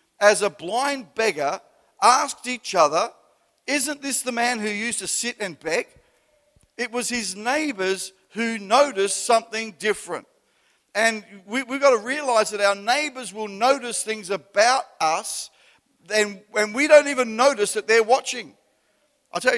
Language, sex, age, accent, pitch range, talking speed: English, male, 50-69, Australian, 155-230 Hz, 145 wpm